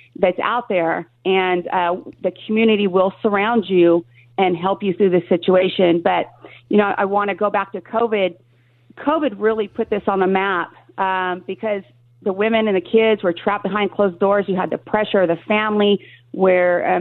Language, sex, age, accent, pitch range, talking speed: English, female, 40-59, American, 180-215 Hz, 190 wpm